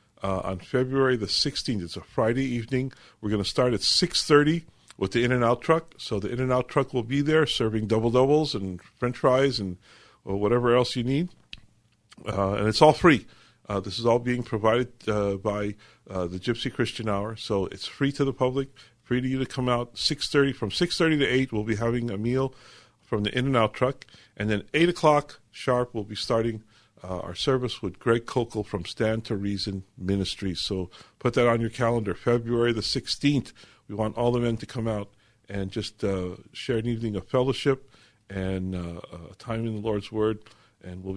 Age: 50-69